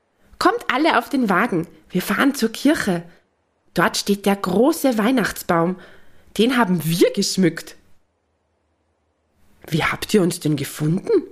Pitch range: 150-215 Hz